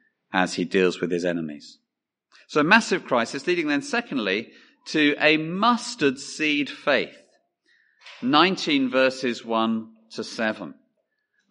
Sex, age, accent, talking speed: male, 40-59, British, 110 wpm